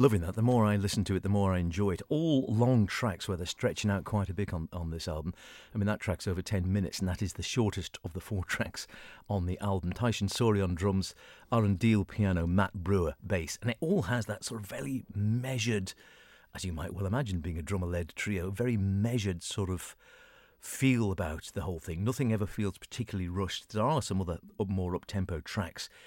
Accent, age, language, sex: British, 50-69, English, male